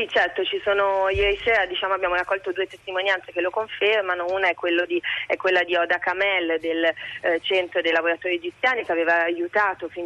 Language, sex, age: Italian, female, 30-49